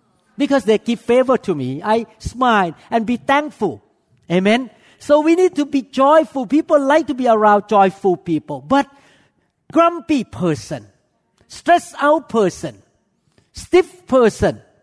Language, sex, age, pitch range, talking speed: English, male, 50-69, 180-265 Hz, 135 wpm